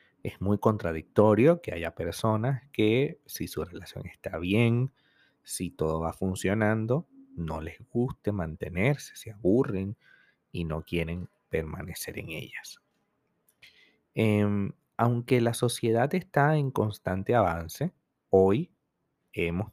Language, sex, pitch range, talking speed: Spanish, male, 85-120 Hz, 115 wpm